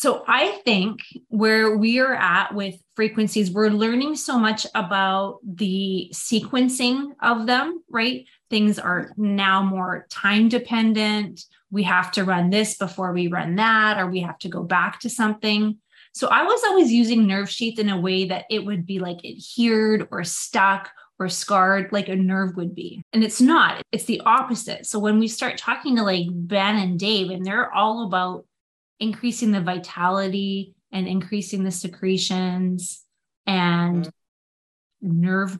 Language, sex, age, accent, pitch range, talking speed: English, female, 20-39, American, 185-220 Hz, 160 wpm